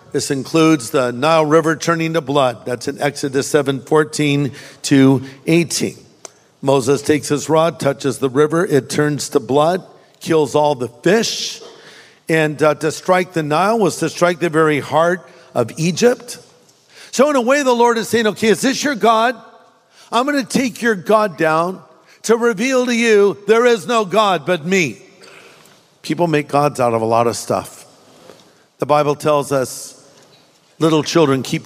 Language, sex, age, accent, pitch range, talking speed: English, male, 50-69, American, 145-195 Hz, 170 wpm